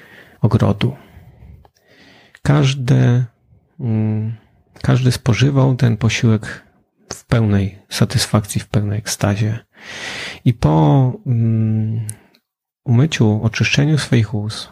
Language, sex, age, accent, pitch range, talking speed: Polish, male, 30-49, native, 105-130 Hz, 80 wpm